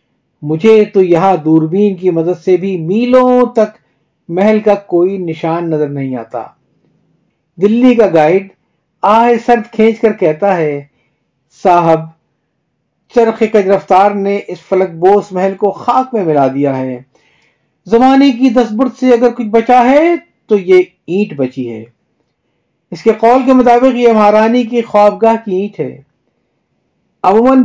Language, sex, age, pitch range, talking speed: Urdu, male, 50-69, 175-235 Hz, 145 wpm